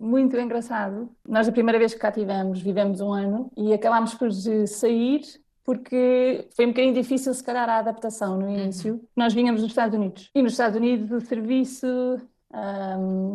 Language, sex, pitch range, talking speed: Portuguese, female, 215-235 Hz, 175 wpm